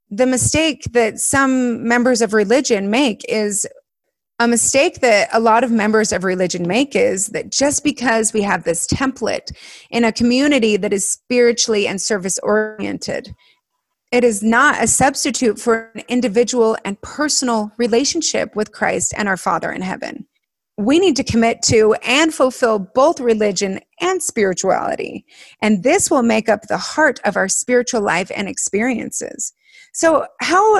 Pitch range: 210-265 Hz